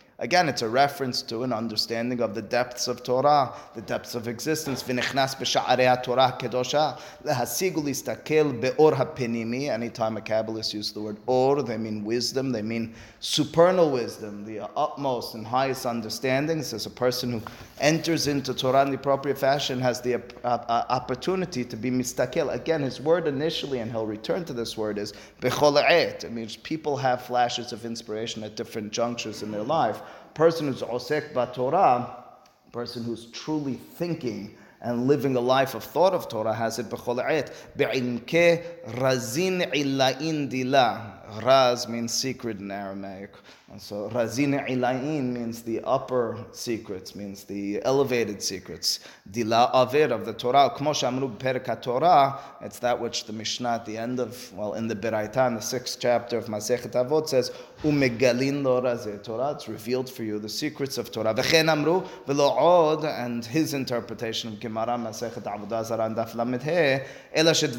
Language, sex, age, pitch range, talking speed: English, male, 30-49, 115-140 Hz, 150 wpm